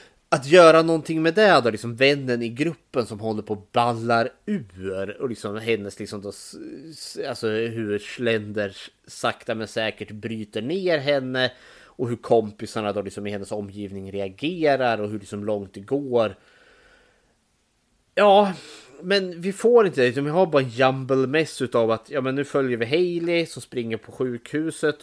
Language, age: Swedish, 30-49